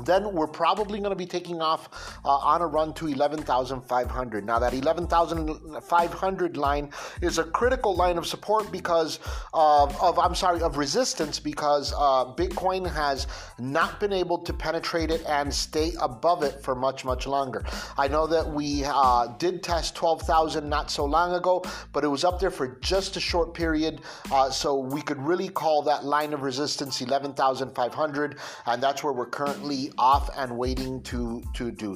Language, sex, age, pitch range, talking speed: English, male, 30-49, 145-180 Hz, 175 wpm